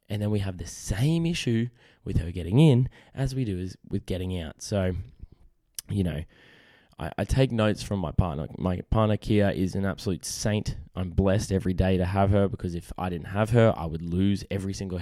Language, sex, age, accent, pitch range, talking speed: English, male, 10-29, Australian, 90-105 Hz, 210 wpm